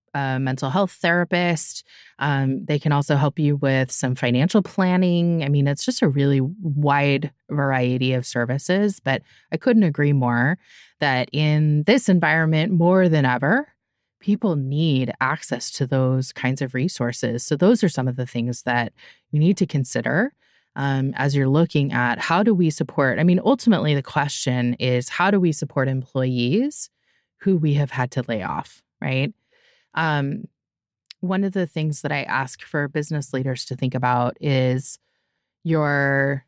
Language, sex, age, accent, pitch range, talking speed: English, female, 20-39, American, 130-175 Hz, 165 wpm